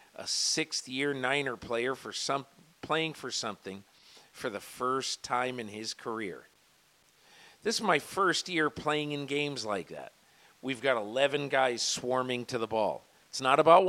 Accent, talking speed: American, 165 wpm